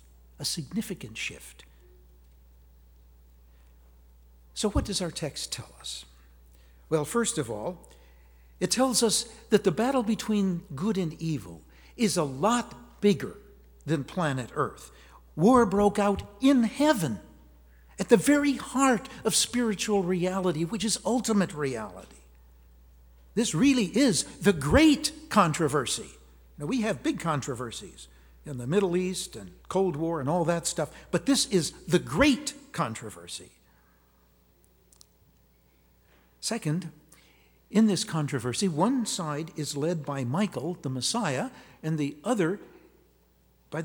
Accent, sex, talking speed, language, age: American, male, 125 wpm, English, 60-79